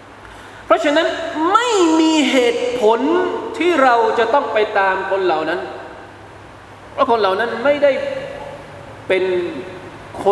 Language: Thai